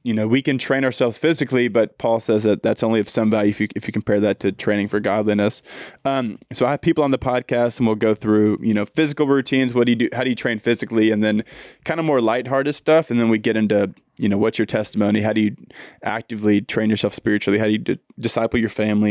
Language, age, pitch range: English, 20-39, 105-125 Hz